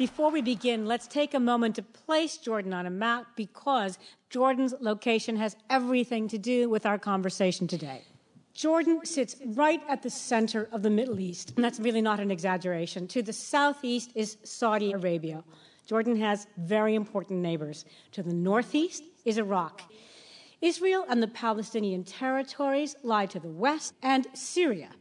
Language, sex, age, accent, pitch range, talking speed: English, female, 50-69, American, 200-265 Hz, 160 wpm